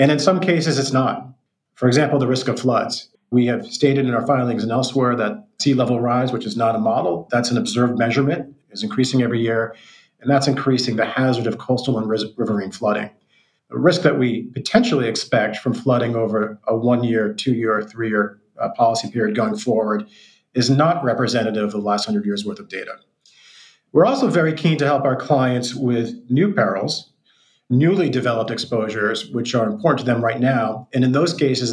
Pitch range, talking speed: 120-150 Hz, 190 wpm